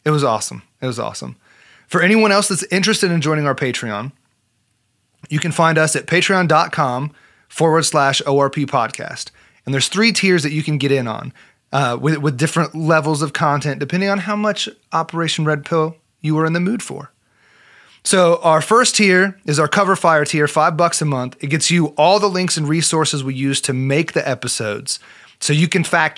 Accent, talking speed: American, 195 wpm